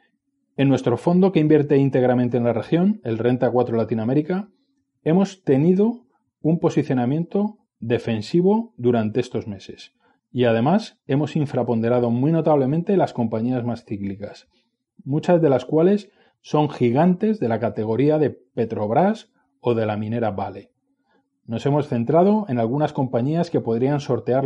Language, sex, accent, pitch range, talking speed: Spanish, male, Spanish, 115-155 Hz, 135 wpm